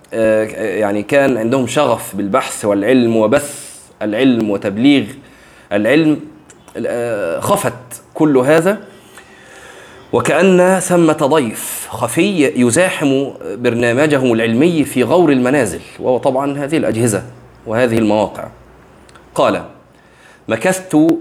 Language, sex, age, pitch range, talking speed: Arabic, male, 30-49, 115-150 Hz, 90 wpm